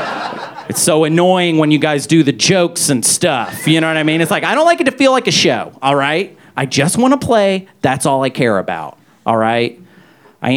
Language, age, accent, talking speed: English, 40-59, American, 240 wpm